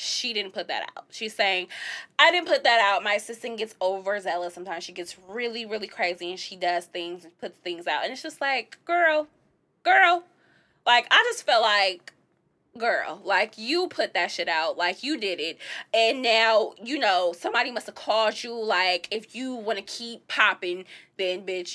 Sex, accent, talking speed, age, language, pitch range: female, American, 195 wpm, 20-39, English, 190-280 Hz